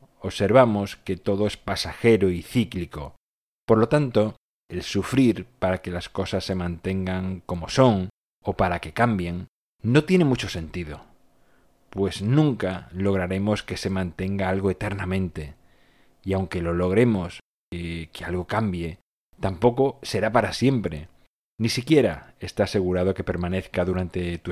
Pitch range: 90-110 Hz